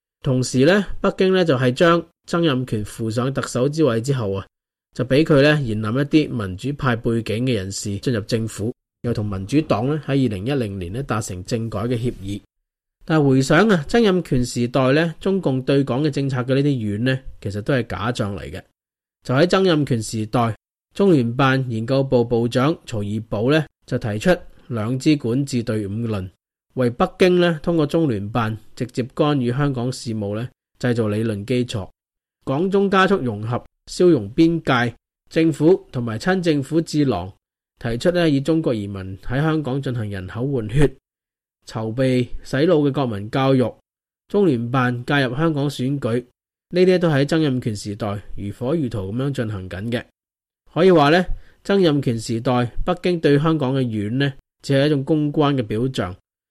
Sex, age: male, 20-39